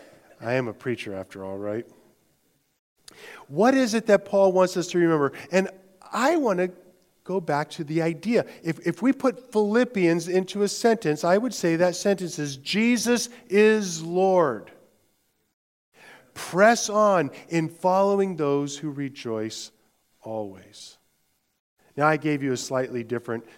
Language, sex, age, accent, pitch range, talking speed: English, male, 40-59, American, 140-205 Hz, 145 wpm